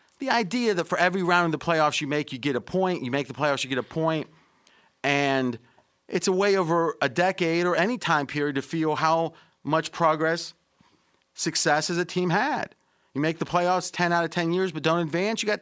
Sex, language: male, English